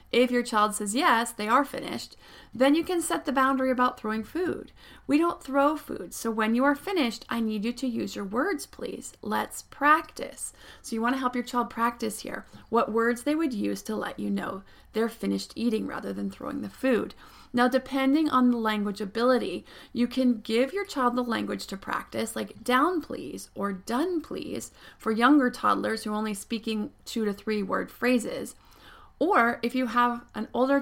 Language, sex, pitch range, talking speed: English, female, 220-270 Hz, 195 wpm